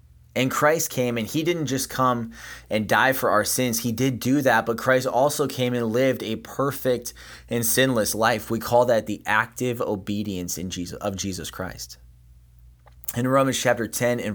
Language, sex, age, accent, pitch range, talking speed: English, male, 20-39, American, 85-125 Hz, 185 wpm